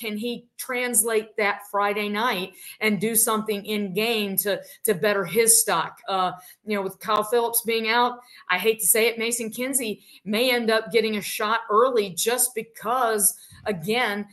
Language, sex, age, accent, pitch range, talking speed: English, female, 50-69, American, 205-240 Hz, 170 wpm